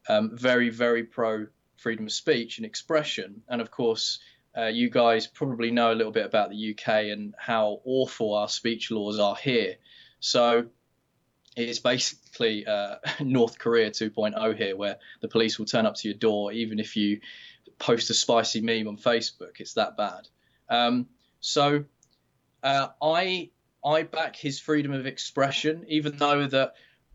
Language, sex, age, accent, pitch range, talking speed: English, male, 20-39, British, 115-140 Hz, 160 wpm